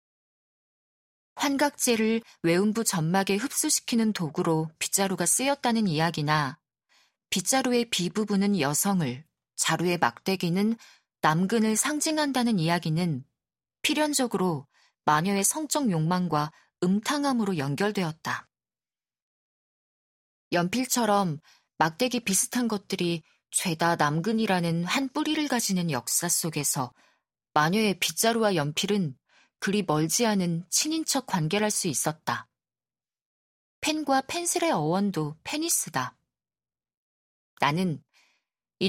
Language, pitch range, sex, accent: Korean, 160-225 Hz, female, native